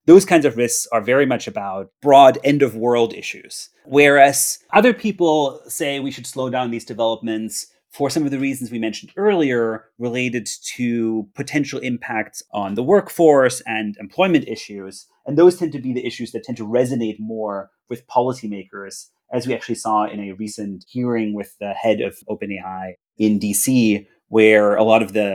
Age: 30-49